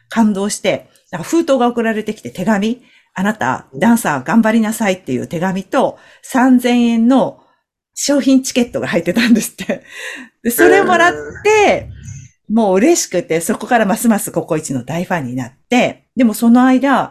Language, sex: Japanese, female